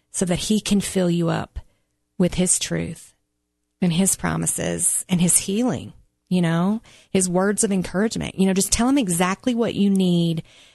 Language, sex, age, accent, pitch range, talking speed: English, female, 30-49, American, 160-190 Hz, 175 wpm